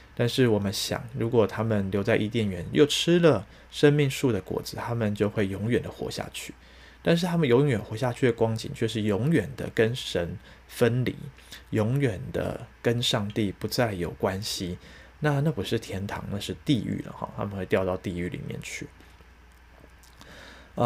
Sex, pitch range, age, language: male, 100-130 Hz, 20-39, Chinese